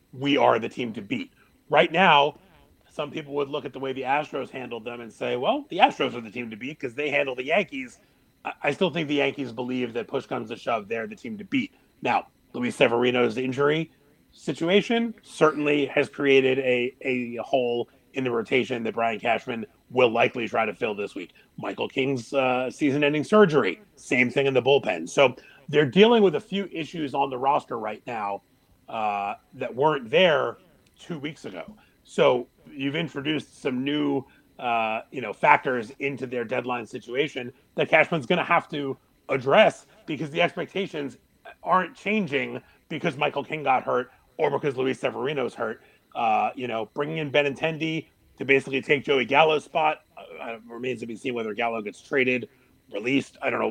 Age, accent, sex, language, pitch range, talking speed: 30-49, American, male, English, 125-155 Hz, 180 wpm